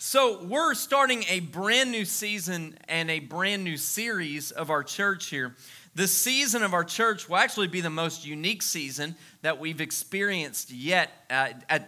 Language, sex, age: English, male, 30-49